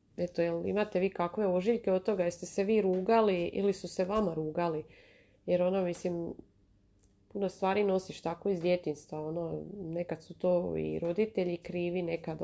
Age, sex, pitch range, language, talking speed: 30-49, female, 165-190 Hz, Croatian, 165 wpm